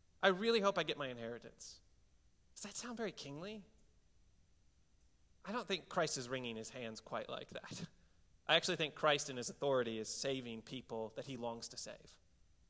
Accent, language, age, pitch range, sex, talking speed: American, English, 30-49, 115-165 Hz, male, 180 wpm